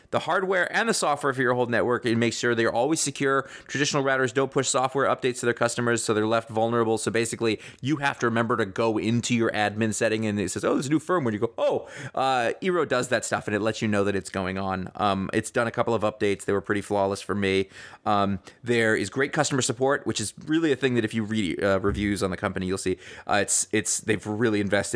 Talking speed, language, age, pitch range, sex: 255 wpm, English, 30-49, 105-125 Hz, male